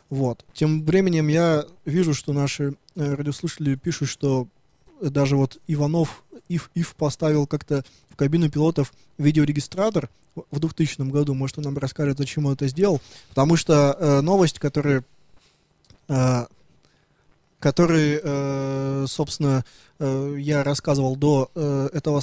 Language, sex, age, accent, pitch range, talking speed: Russian, male, 20-39, native, 135-155 Hz, 110 wpm